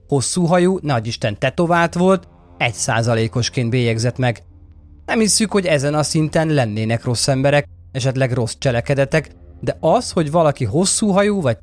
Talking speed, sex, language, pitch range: 135 wpm, male, Hungarian, 115-170 Hz